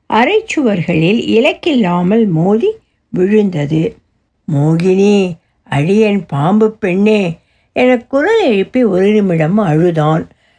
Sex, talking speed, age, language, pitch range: female, 80 wpm, 60-79, Tamil, 175-240 Hz